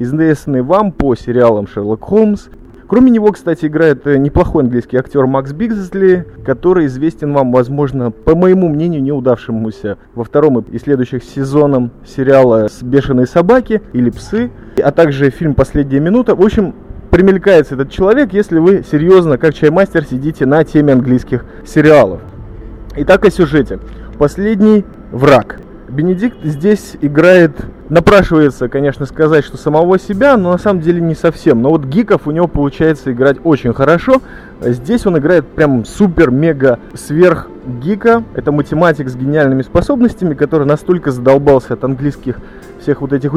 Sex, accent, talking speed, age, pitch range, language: male, native, 140 wpm, 20-39, 130-180 Hz, Russian